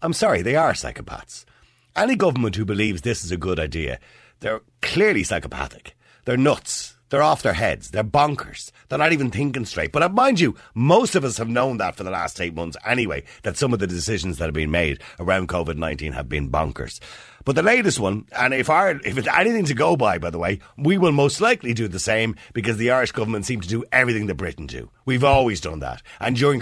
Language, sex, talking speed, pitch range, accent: English, male, 220 wpm, 85-125 Hz, Irish